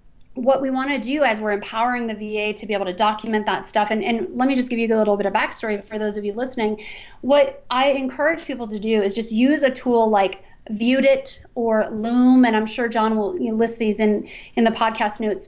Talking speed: 235 wpm